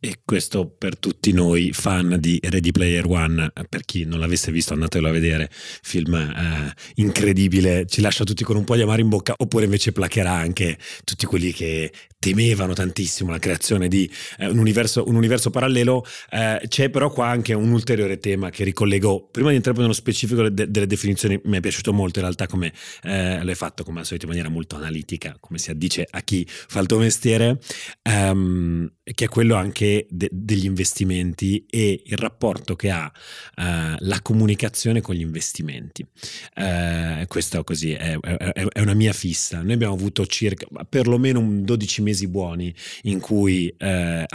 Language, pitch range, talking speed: Italian, 85-115 Hz, 180 wpm